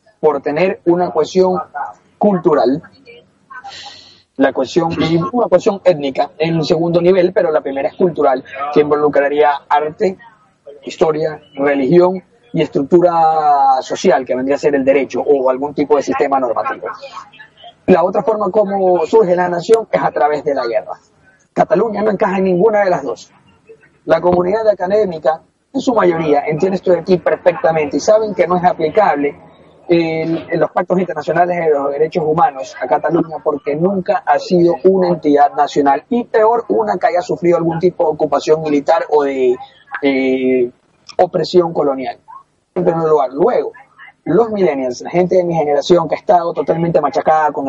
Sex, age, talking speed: male, 30-49, 160 wpm